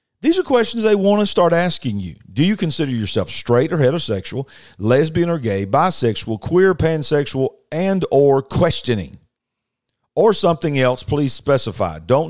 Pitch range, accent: 110-145 Hz, American